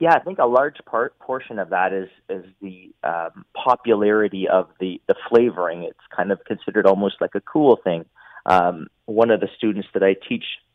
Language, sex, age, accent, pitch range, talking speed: English, male, 30-49, American, 95-105 Hz, 195 wpm